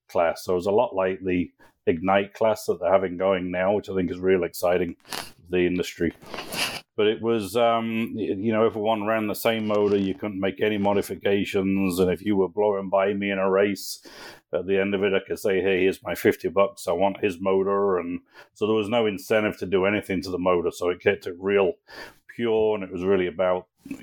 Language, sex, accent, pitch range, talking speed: English, male, British, 90-105 Hz, 220 wpm